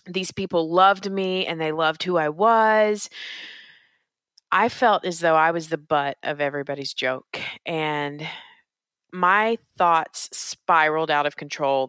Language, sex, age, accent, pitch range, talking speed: English, female, 30-49, American, 145-175 Hz, 140 wpm